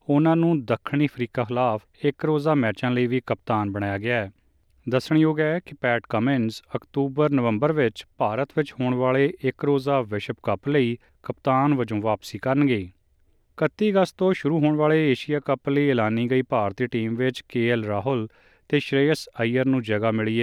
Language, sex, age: Punjabi, male, 30-49